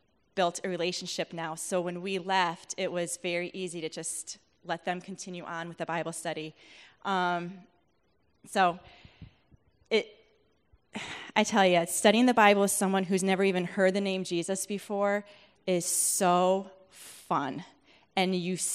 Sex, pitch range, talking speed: female, 180-235 Hz, 145 wpm